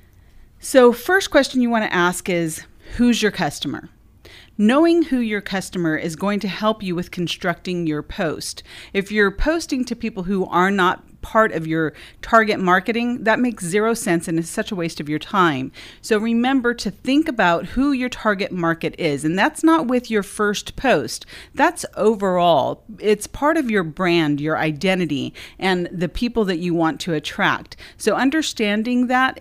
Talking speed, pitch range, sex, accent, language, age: 175 wpm, 160-230 Hz, female, American, English, 40-59